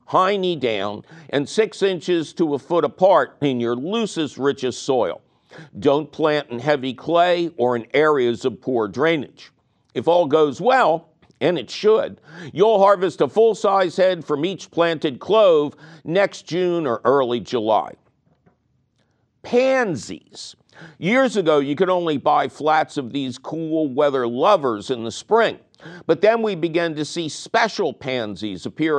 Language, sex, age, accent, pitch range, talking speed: English, male, 50-69, American, 130-190 Hz, 145 wpm